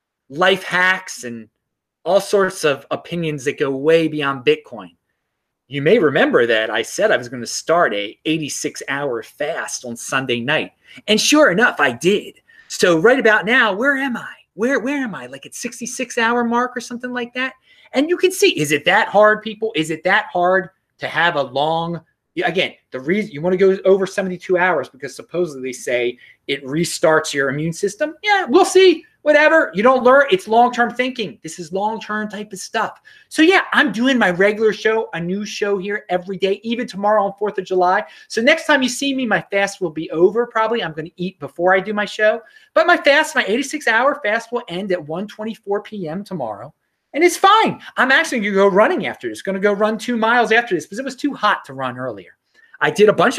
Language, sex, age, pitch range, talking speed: English, male, 30-49, 180-255 Hz, 210 wpm